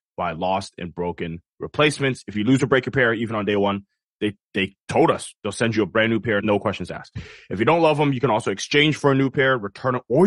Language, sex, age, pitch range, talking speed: English, male, 20-39, 100-135 Hz, 270 wpm